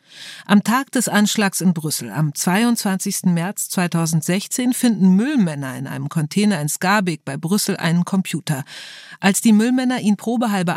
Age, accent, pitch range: 40-59, German, 165-205 Hz